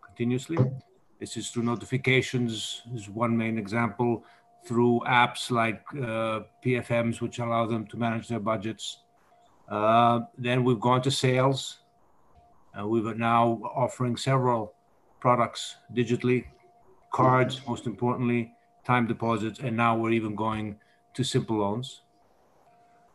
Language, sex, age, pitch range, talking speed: English, male, 50-69, 115-135 Hz, 125 wpm